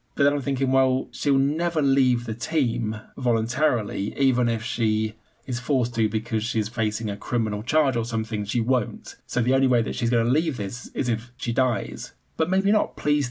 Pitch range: 115-135 Hz